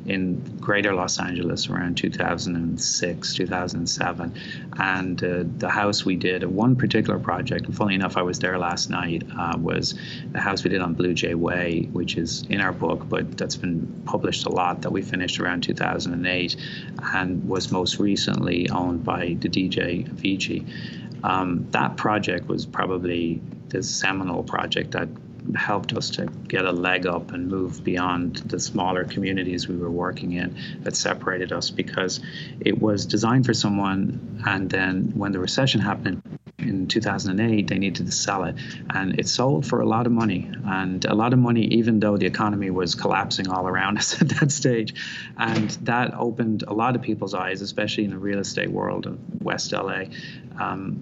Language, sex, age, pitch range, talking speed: English, male, 30-49, 90-105 Hz, 175 wpm